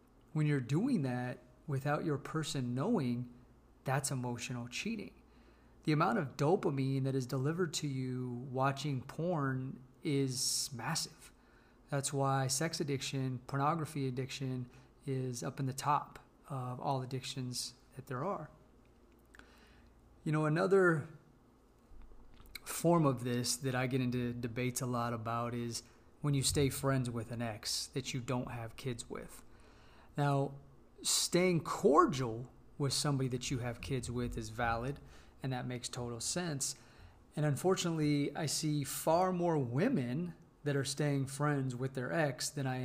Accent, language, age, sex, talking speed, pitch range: American, English, 30-49, male, 145 wpm, 125-150 Hz